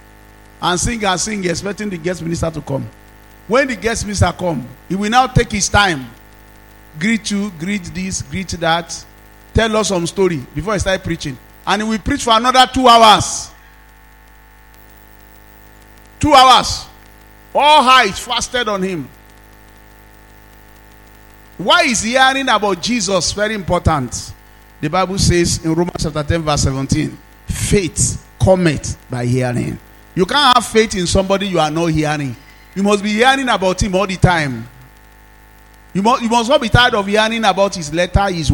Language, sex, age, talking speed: English, male, 50-69, 160 wpm